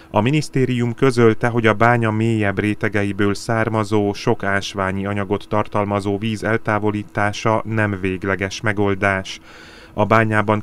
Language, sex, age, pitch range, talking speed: Hungarian, male, 30-49, 100-110 Hz, 115 wpm